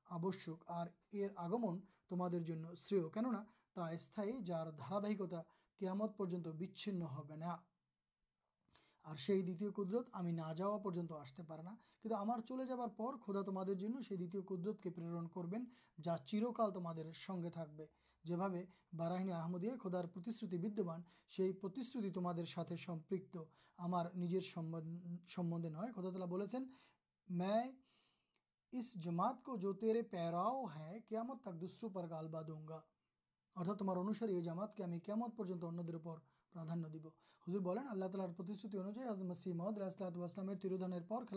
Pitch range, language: 170-210 Hz, Urdu